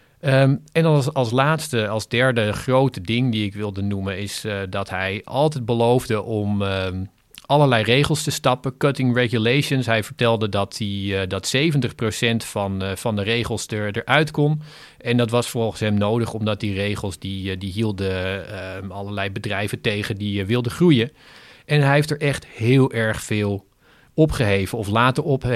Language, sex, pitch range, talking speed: Dutch, male, 100-125 Hz, 165 wpm